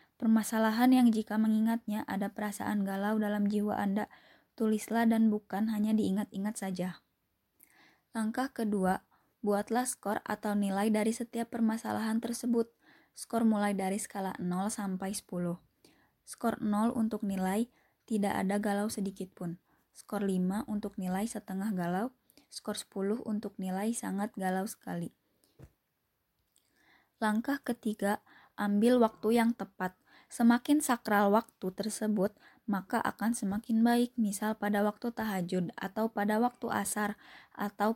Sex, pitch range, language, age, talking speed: female, 195-225 Hz, Indonesian, 20-39, 120 wpm